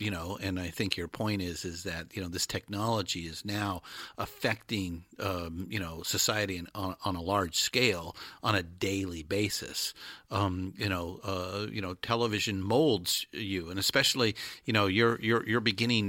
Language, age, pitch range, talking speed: English, 50-69, 95-110 Hz, 175 wpm